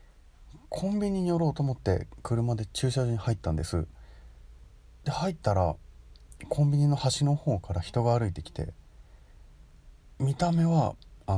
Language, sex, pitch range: Japanese, male, 85-120 Hz